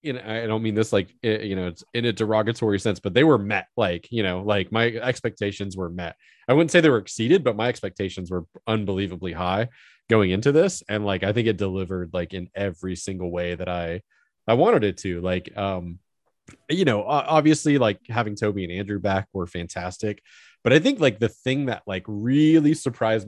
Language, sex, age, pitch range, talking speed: English, male, 20-39, 95-115 Hz, 205 wpm